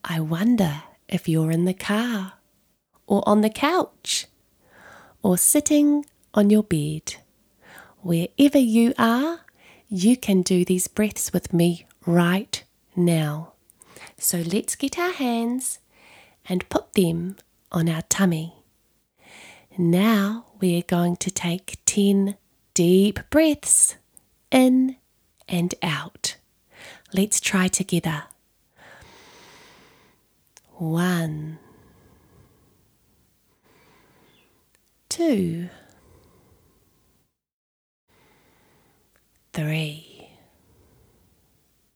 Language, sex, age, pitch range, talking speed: English, female, 30-49, 170-230 Hz, 80 wpm